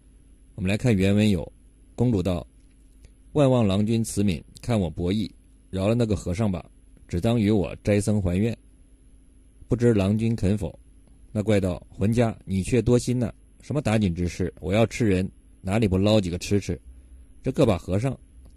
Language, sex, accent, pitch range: Chinese, male, native, 80-115 Hz